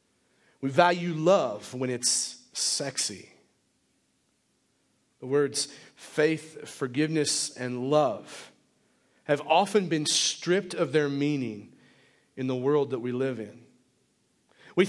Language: English